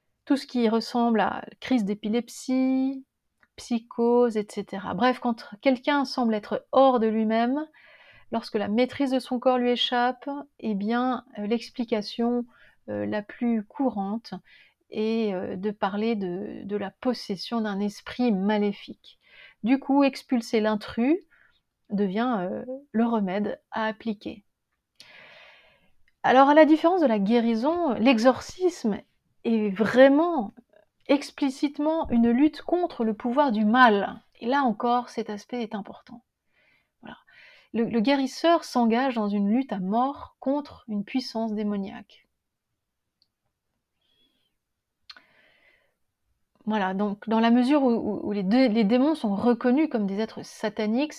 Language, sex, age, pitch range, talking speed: French, female, 30-49, 215-265 Hz, 130 wpm